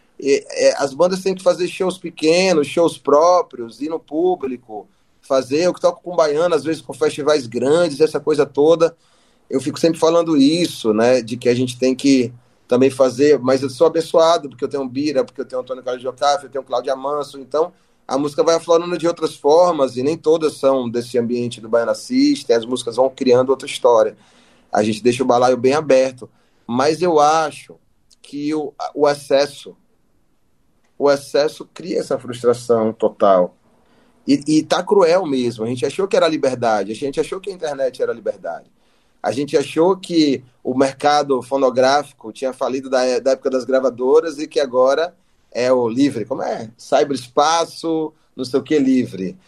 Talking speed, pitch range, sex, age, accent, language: 180 wpm, 130-180 Hz, male, 30-49, Brazilian, Portuguese